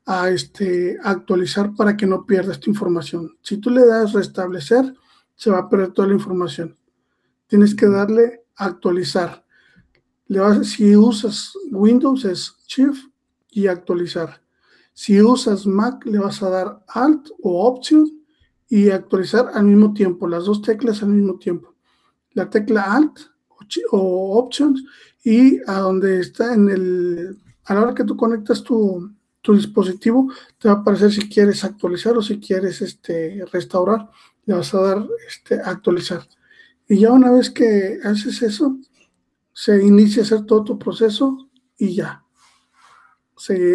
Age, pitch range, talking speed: 50-69, 190-235 Hz, 150 wpm